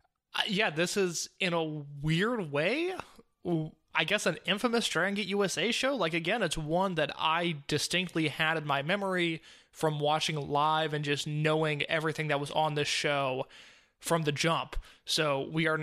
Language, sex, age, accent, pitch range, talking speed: English, male, 20-39, American, 145-165 Hz, 165 wpm